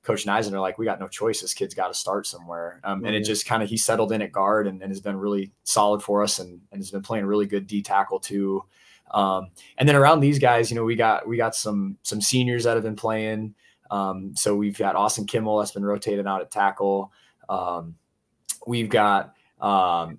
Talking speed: 235 wpm